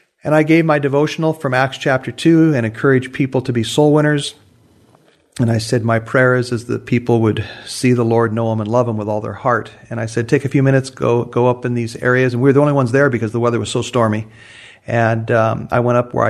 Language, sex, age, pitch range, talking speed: English, male, 40-59, 115-135 Hz, 260 wpm